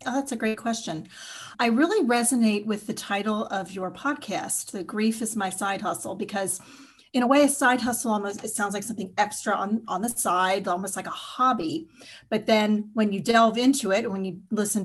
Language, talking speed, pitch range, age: English, 205 wpm, 185-225 Hz, 40-59